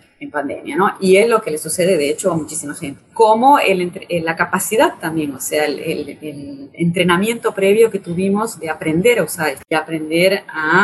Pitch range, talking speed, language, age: 150-195 Hz, 215 wpm, Spanish, 30-49